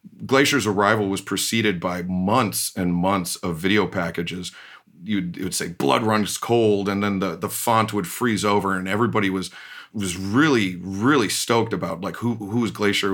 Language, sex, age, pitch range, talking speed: English, male, 30-49, 95-105 Hz, 175 wpm